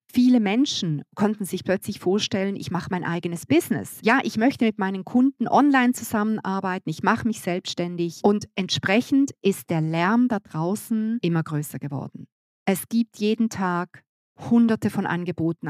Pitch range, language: 170-230 Hz, German